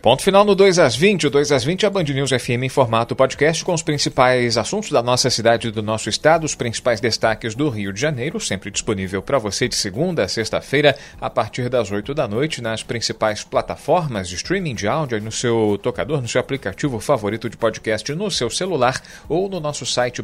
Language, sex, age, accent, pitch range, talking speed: Portuguese, male, 40-59, Brazilian, 110-145 Hz, 215 wpm